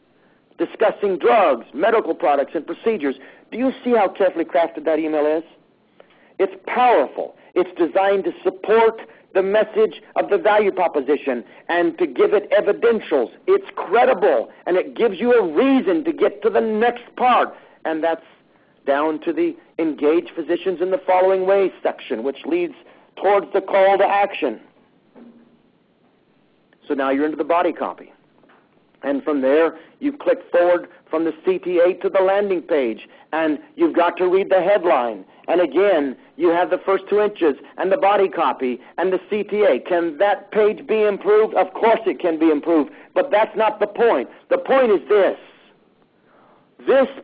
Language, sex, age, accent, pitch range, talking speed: English, male, 50-69, American, 170-240 Hz, 165 wpm